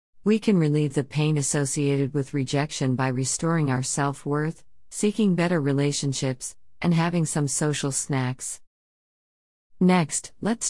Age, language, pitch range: 50-69, English, 135-165 Hz